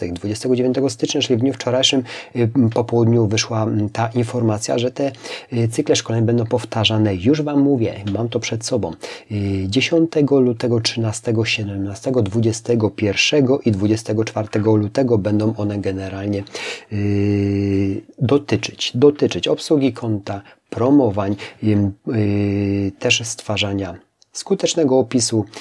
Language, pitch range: Polish, 105-130 Hz